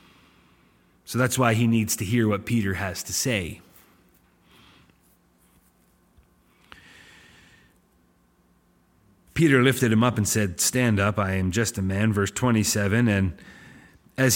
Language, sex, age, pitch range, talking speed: English, male, 30-49, 110-140 Hz, 120 wpm